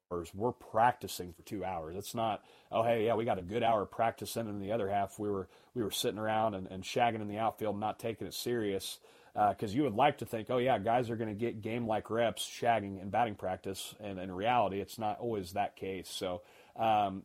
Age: 30-49